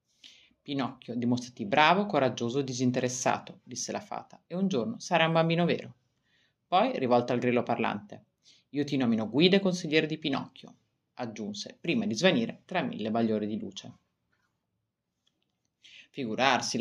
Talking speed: 140 wpm